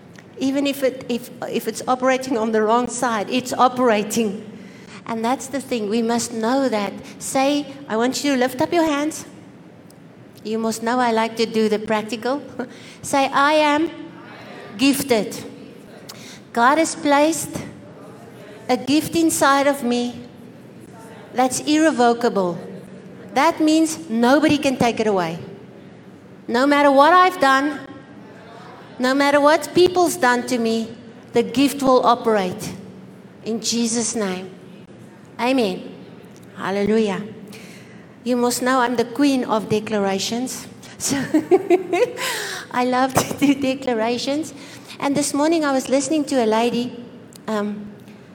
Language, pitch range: English, 220-275 Hz